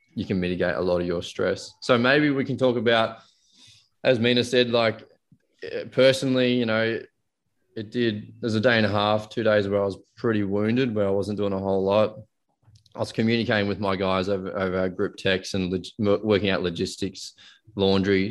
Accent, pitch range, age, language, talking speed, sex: Australian, 95-105 Hz, 20-39, English, 195 wpm, male